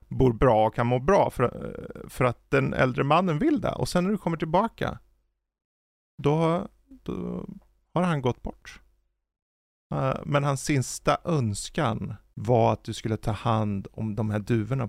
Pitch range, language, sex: 115-170 Hz, Swedish, male